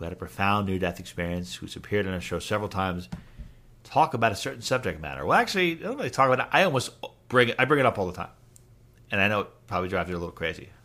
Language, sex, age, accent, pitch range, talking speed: English, male, 50-69, American, 95-125 Hz, 270 wpm